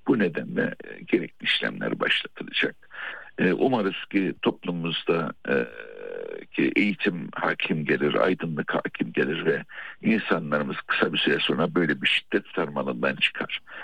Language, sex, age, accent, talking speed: Turkish, male, 60-79, native, 115 wpm